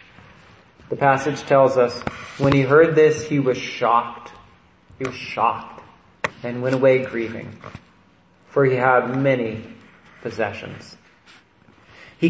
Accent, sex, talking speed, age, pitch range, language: American, male, 115 wpm, 30-49, 130-185 Hz, English